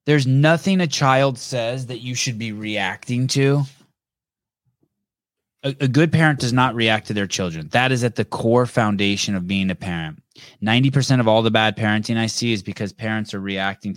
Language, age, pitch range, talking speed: English, 20-39, 105-140 Hz, 190 wpm